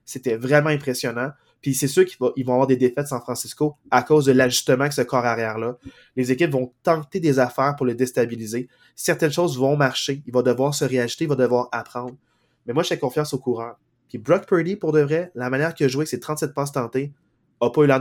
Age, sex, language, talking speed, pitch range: 20-39, male, French, 230 wpm, 125-150 Hz